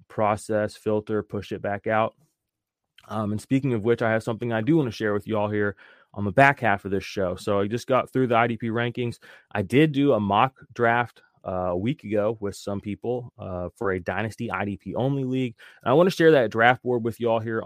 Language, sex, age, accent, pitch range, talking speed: English, male, 20-39, American, 100-120 Hz, 240 wpm